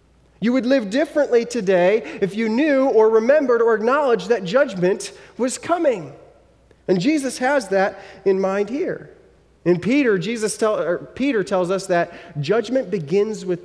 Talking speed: 140 wpm